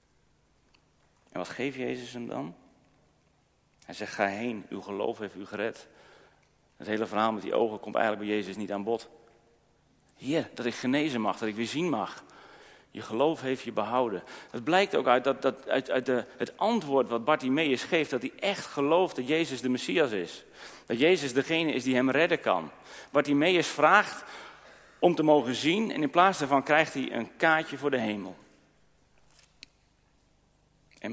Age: 40-59